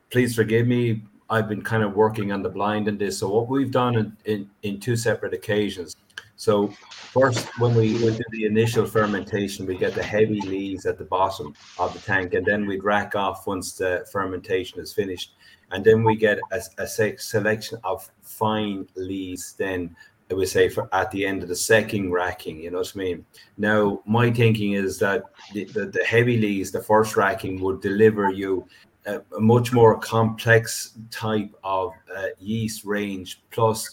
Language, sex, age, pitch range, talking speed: English, male, 30-49, 95-115 Hz, 185 wpm